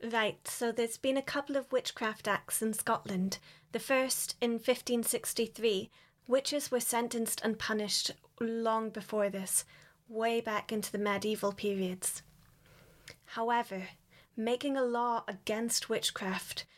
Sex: female